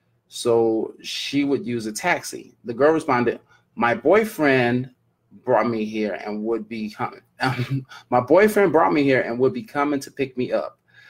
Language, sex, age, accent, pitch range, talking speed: English, male, 30-49, American, 115-150 Hz, 170 wpm